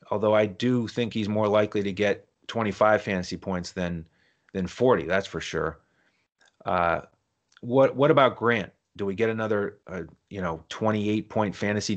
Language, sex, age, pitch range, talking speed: English, male, 30-49, 95-115 Hz, 160 wpm